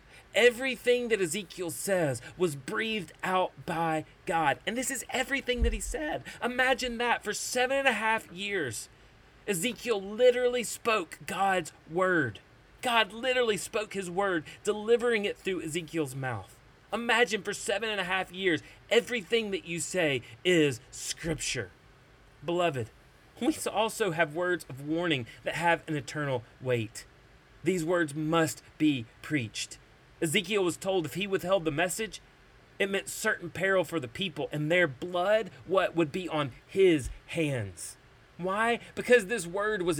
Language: English